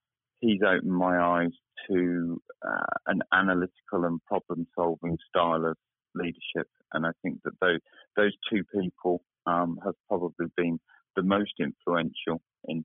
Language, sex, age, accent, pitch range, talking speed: English, male, 40-59, British, 85-95 Hz, 135 wpm